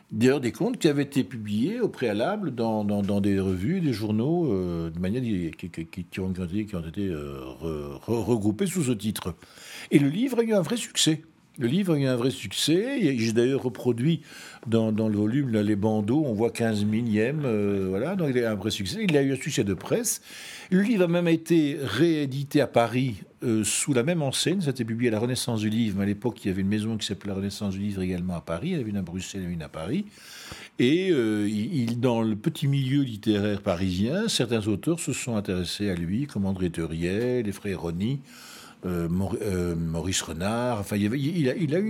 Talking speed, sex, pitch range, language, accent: 235 wpm, male, 95-140 Hz, French, French